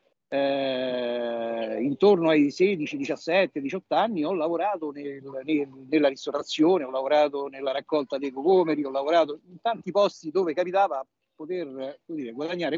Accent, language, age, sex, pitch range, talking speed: native, Italian, 50-69, male, 135-205 Hz, 140 wpm